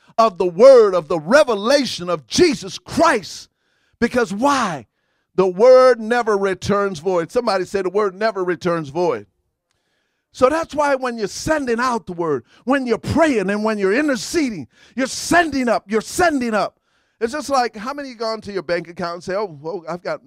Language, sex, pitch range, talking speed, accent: English, male, 185-265 Hz, 180 wpm, American